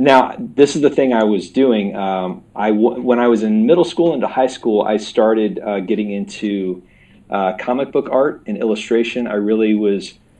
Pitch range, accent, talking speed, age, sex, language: 90-110 Hz, American, 190 wpm, 30-49, male, English